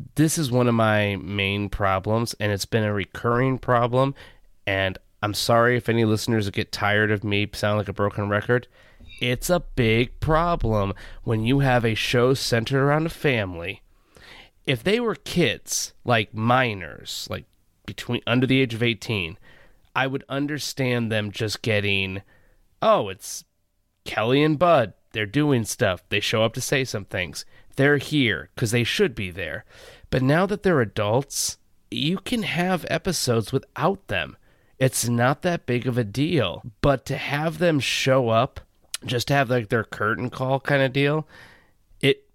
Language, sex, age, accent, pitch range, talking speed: English, male, 30-49, American, 105-140 Hz, 165 wpm